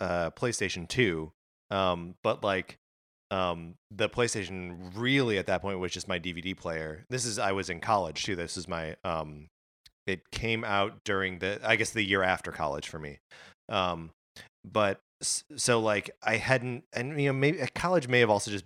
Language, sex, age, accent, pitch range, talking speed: English, male, 30-49, American, 90-115 Hz, 185 wpm